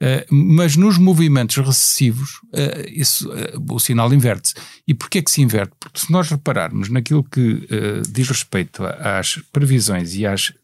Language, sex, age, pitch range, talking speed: Portuguese, male, 50-69, 120-150 Hz, 135 wpm